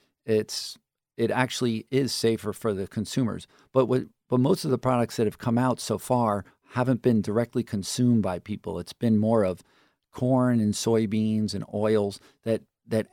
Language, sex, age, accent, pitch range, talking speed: English, male, 50-69, American, 100-120 Hz, 175 wpm